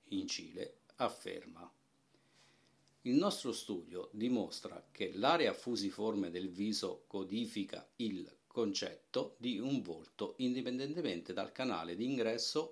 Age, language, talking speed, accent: 50-69, Italian, 110 wpm, native